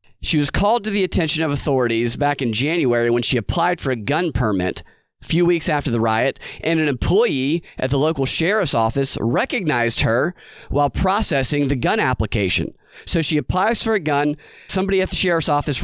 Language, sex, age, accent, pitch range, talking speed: English, male, 30-49, American, 140-170 Hz, 190 wpm